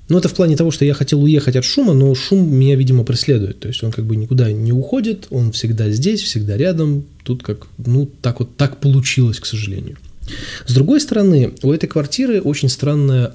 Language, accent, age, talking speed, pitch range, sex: Russian, native, 20-39, 205 wpm, 120-155 Hz, male